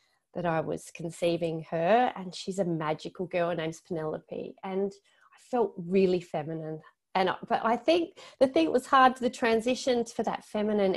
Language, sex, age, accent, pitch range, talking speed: English, female, 30-49, Australian, 165-225 Hz, 170 wpm